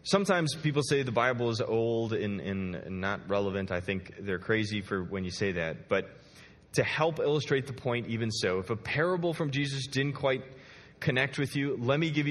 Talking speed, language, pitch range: 200 wpm, English, 120-170 Hz